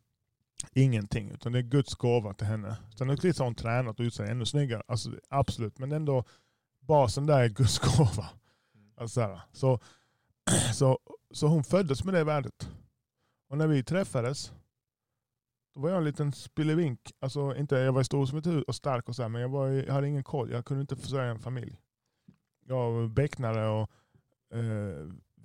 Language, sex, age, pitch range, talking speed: Swedish, male, 10-29, 115-140 Hz, 180 wpm